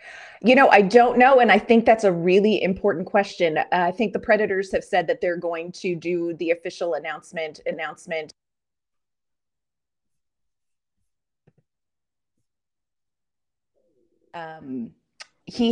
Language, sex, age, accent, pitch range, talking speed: English, female, 30-49, American, 175-230 Hz, 115 wpm